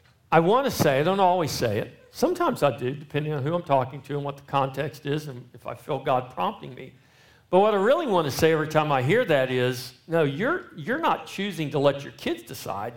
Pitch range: 140-205 Hz